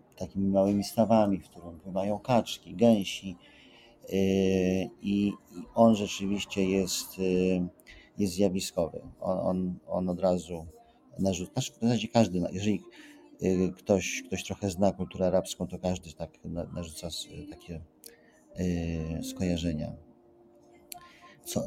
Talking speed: 100 wpm